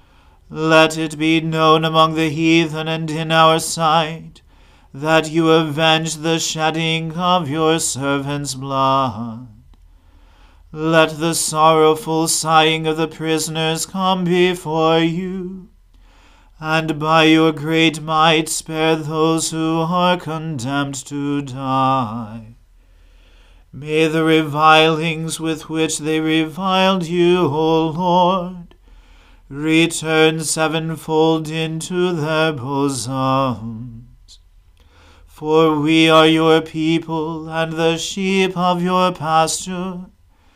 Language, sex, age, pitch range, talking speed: English, male, 40-59, 140-160 Hz, 100 wpm